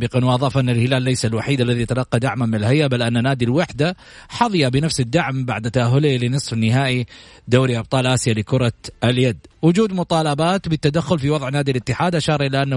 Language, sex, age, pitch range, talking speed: Arabic, male, 40-59, 120-175 Hz, 175 wpm